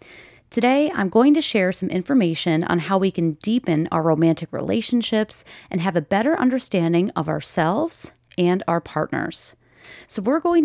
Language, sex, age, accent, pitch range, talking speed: English, female, 30-49, American, 165-230 Hz, 160 wpm